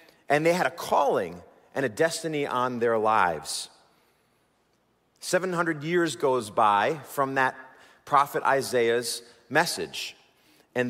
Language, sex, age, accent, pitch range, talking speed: English, male, 40-59, American, 130-180 Hz, 115 wpm